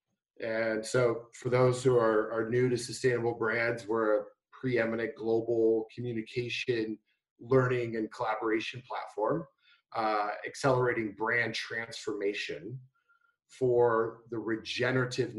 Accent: American